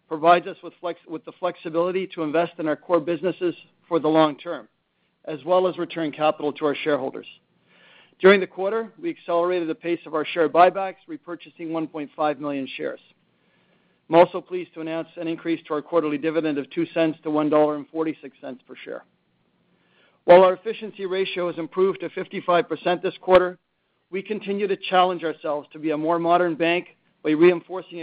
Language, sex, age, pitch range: English, male, 50-69, 160-185 Hz